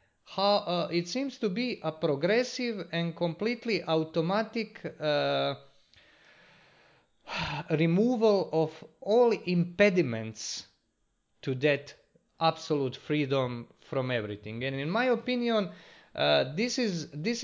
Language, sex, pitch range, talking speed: English, male, 125-160 Hz, 105 wpm